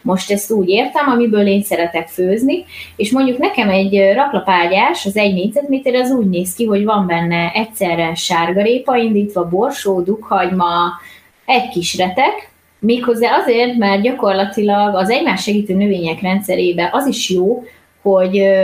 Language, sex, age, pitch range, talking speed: Hungarian, female, 20-39, 175-225 Hz, 140 wpm